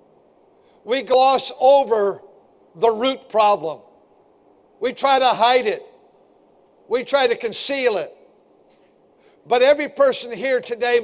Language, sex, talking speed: English, male, 115 wpm